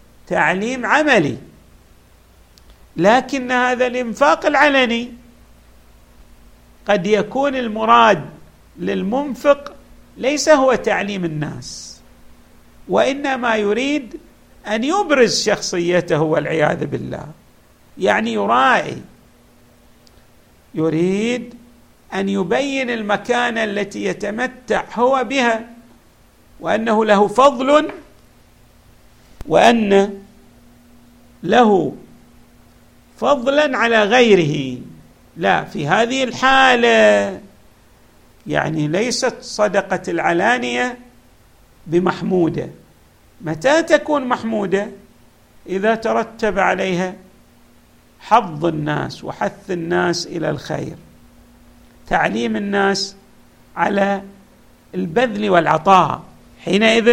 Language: Arabic